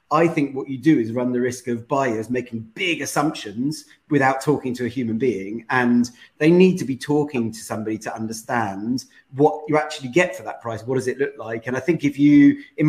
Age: 30-49